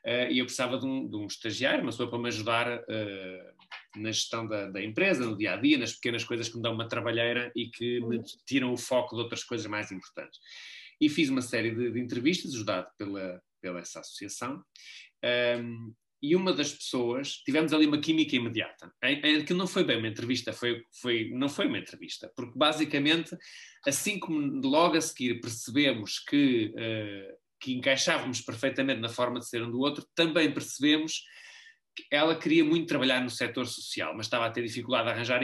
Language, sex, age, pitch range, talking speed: Portuguese, male, 20-39, 115-155 Hz, 180 wpm